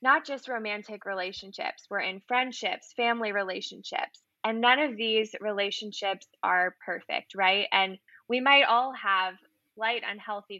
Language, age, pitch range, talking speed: English, 10-29, 195-225 Hz, 135 wpm